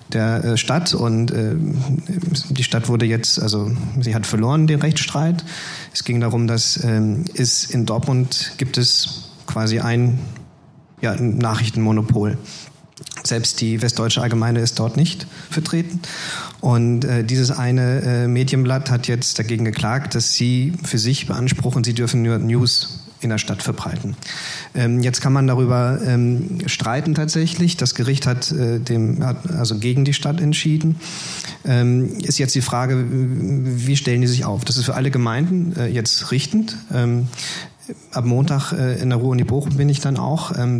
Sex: male